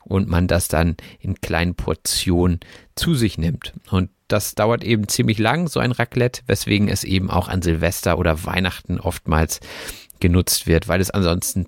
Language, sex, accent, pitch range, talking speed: German, male, German, 85-115 Hz, 170 wpm